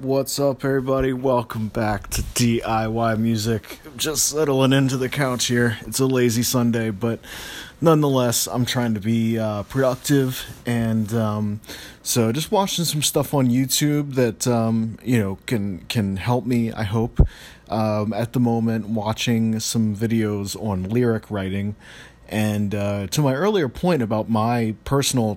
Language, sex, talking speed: English, male, 155 wpm